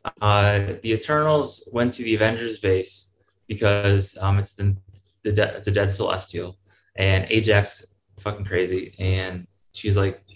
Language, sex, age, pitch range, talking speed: English, male, 20-39, 95-105 Hz, 145 wpm